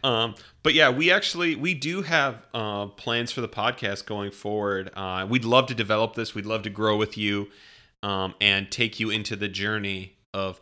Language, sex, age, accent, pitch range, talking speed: English, male, 30-49, American, 100-125 Hz, 200 wpm